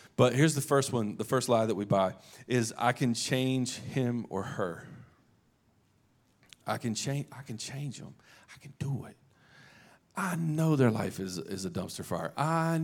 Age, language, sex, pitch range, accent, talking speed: 40-59, English, male, 125-170 Hz, American, 180 wpm